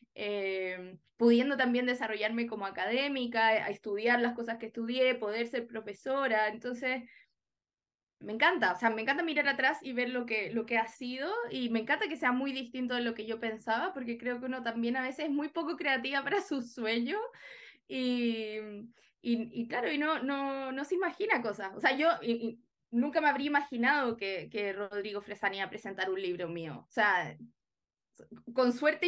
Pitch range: 225-280 Hz